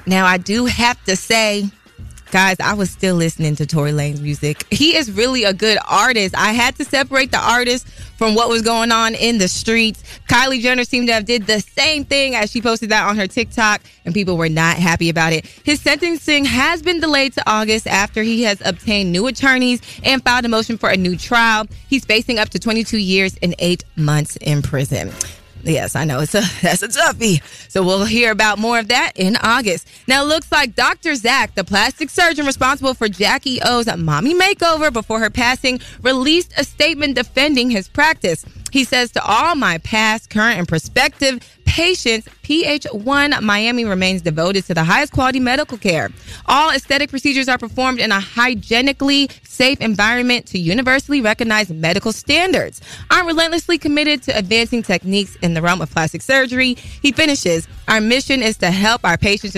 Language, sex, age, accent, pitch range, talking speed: English, female, 20-39, American, 190-265 Hz, 190 wpm